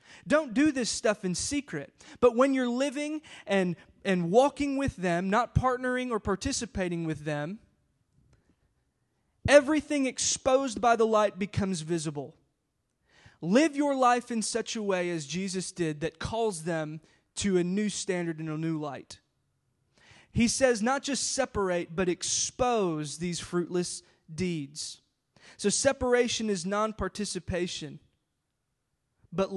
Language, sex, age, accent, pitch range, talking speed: English, male, 20-39, American, 175-235 Hz, 130 wpm